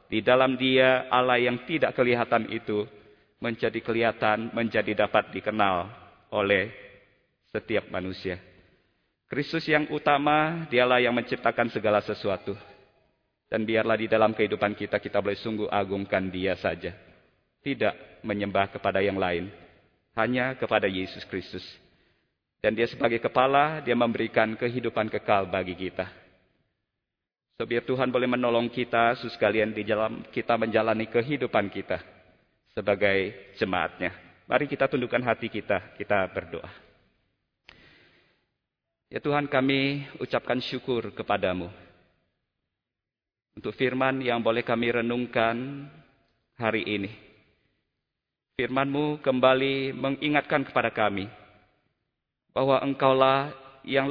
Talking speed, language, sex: 110 wpm, Indonesian, male